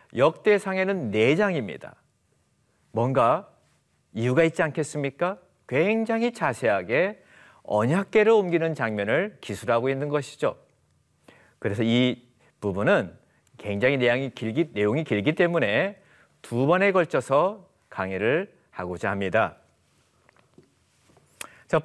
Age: 40-59